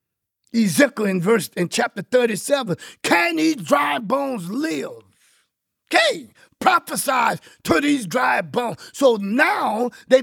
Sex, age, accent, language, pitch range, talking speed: male, 50-69, American, English, 215-325 Hz, 115 wpm